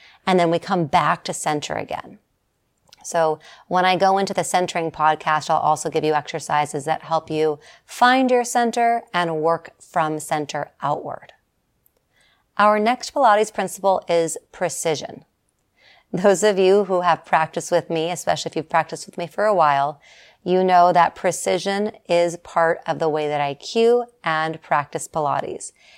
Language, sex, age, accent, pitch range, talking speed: English, female, 30-49, American, 155-185 Hz, 160 wpm